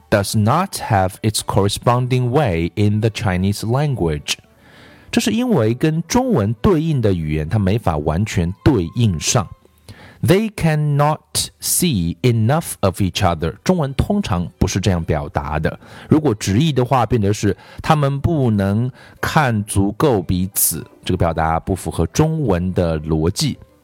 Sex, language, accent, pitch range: male, Chinese, native, 90-125 Hz